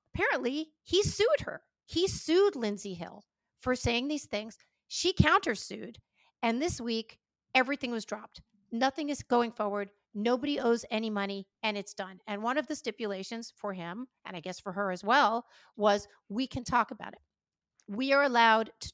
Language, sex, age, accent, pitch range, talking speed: English, female, 40-59, American, 205-265 Hz, 175 wpm